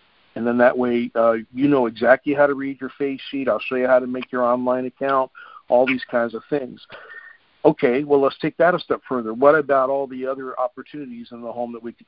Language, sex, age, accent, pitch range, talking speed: English, male, 50-69, American, 115-135 Hz, 240 wpm